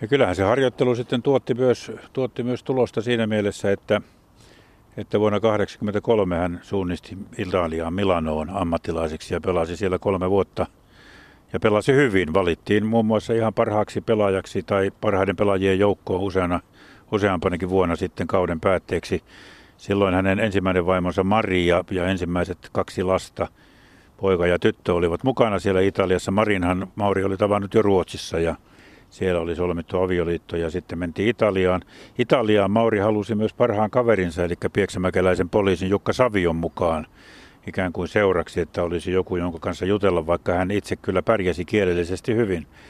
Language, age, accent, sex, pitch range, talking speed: Finnish, 50-69, native, male, 90-110 Hz, 145 wpm